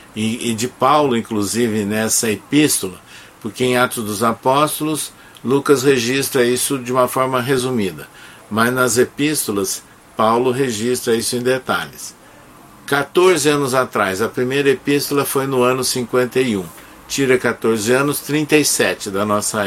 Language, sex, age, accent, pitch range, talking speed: Portuguese, male, 60-79, Brazilian, 105-130 Hz, 130 wpm